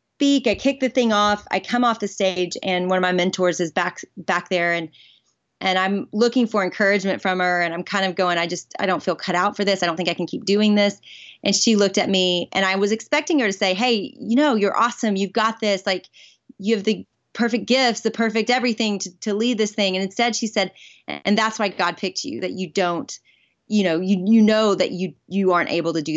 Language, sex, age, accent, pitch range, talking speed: English, female, 30-49, American, 180-215 Hz, 250 wpm